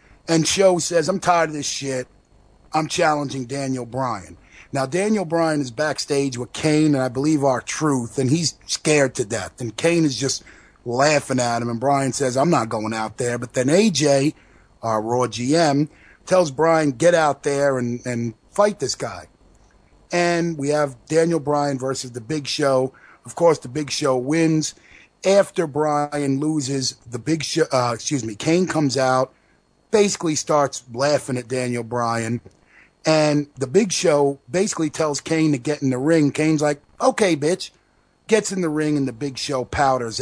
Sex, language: male, English